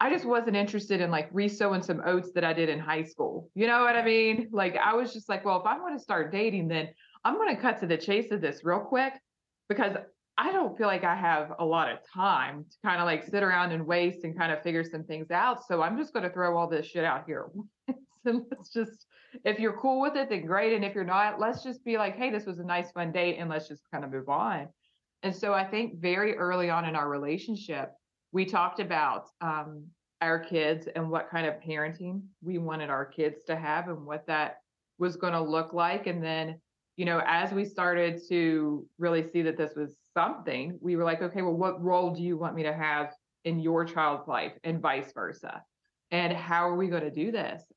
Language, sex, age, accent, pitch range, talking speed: English, female, 30-49, American, 160-200 Hz, 235 wpm